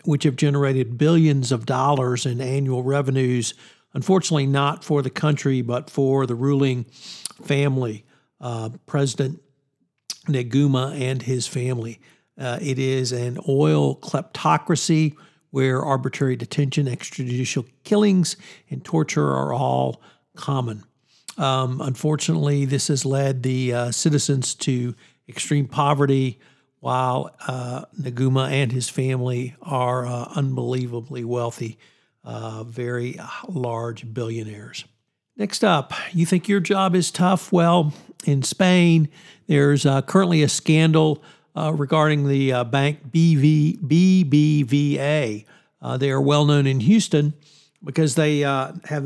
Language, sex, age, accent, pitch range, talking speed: English, male, 60-79, American, 125-155 Hz, 120 wpm